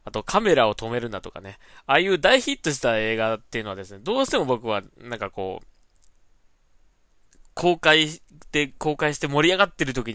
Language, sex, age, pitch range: Japanese, male, 20-39, 95-140 Hz